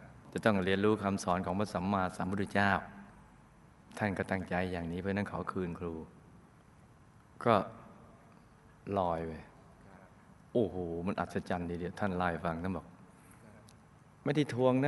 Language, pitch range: Thai, 95-125 Hz